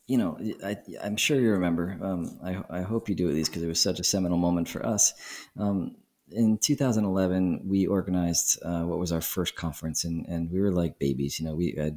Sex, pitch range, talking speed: male, 80-95 Hz, 225 wpm